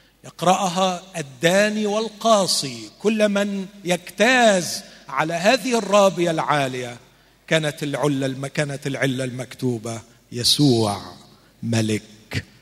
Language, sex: Arabic, male